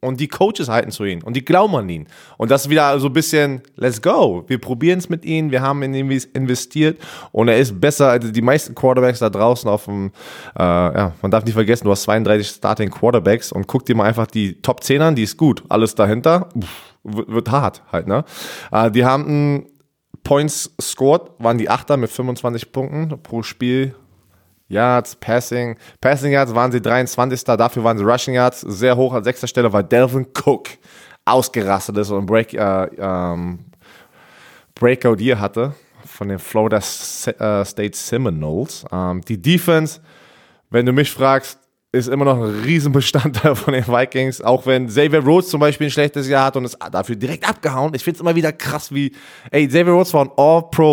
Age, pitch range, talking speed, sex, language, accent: 20-39, 110-145 Hz, 195 wpm, male, German, German